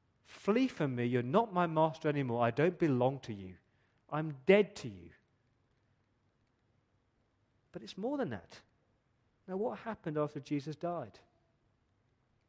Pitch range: 120-165 Hz